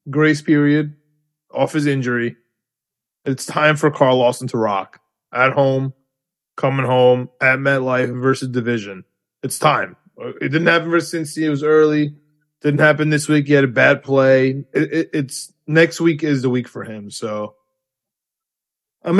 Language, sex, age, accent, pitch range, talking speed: English, male, 20-39, American, 130-160 Hz, 155 wpm